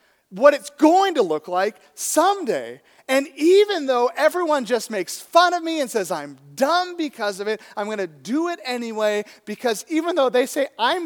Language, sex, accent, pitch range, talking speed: English, male, American, 210-295 Hz, 185 wpm